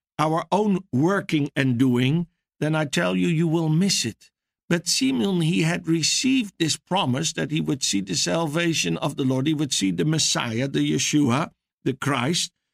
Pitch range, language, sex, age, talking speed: 135-175 Hz, English, male, 60-79, 180 wpm